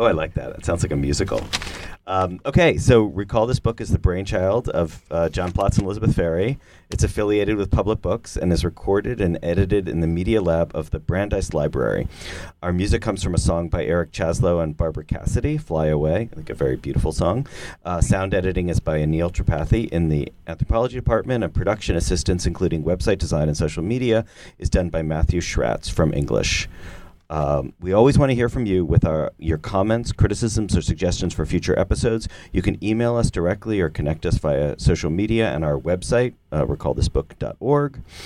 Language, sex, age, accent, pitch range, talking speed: English, male, 30-49, American, 80-105 Hz, 195 wpm